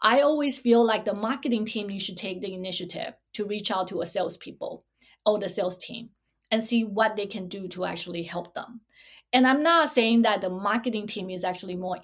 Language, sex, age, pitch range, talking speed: English, female, 20-39, 190-240 Hz, 215 wpm